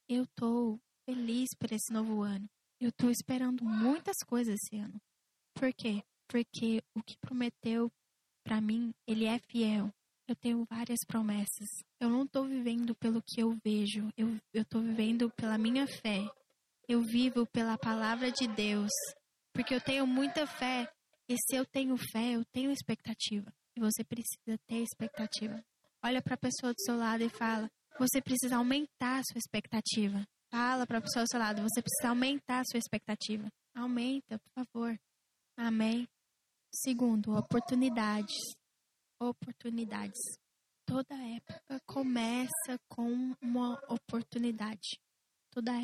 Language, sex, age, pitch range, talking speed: English, female, 10-29, 220-250 Hz, 145 wpm